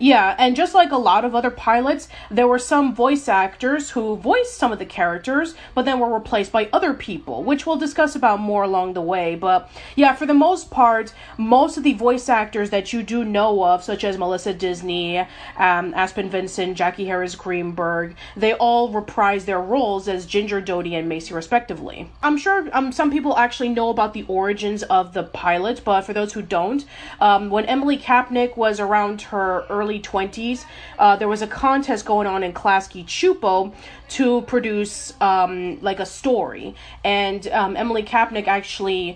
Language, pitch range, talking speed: English, 190-245 Hz, 180 wpm